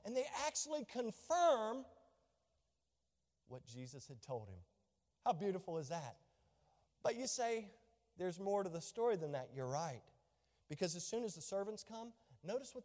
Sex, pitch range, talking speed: male, 155-210 Hz, 160 wpm